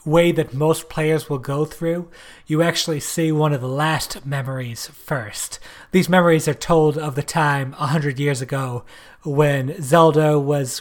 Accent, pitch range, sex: American, 135-165 Hz, male